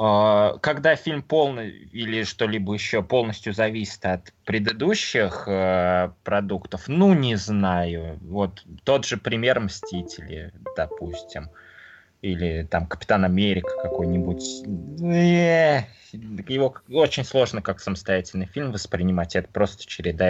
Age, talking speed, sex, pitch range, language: 20-39, 105 wpm, male, 95-130 Hz, Russian